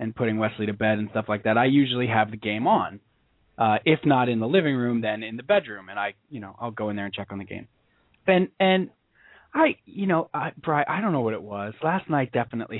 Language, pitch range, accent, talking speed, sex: English, 110-145 Hz, American, 260 wpm, male